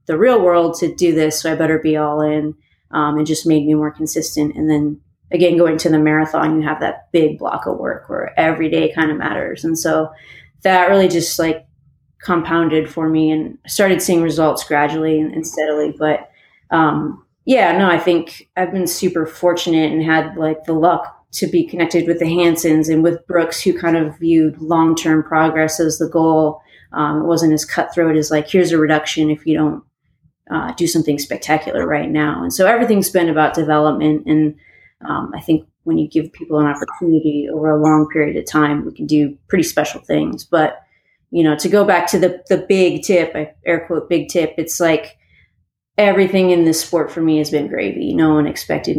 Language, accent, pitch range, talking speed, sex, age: English, American, 155-170 Hz, 200 wpm, female, 30-49